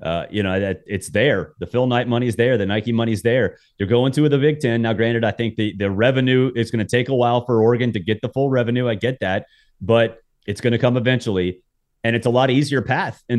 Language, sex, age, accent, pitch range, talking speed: English, male, 30-49, American, 110-130 Hz, 265 wpm